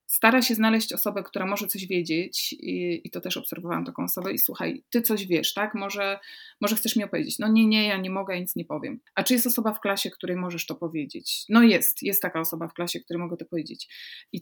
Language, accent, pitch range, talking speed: Polish, native, 175-220 Hz, 235 wpm